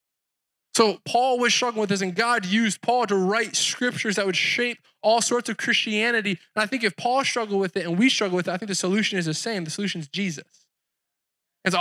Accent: American